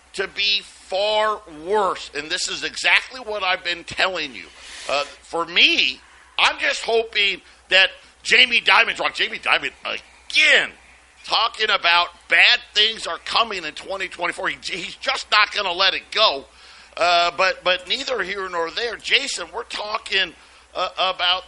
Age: 50-69